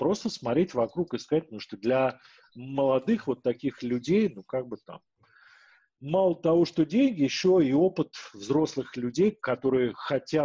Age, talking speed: 40-59, 155 wpm